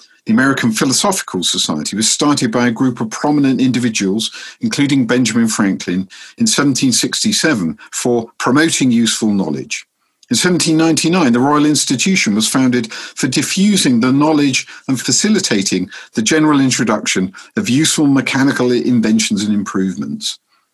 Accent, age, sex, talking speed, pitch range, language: British, 50-69, male, 125 wpm, 120-160 Hz, English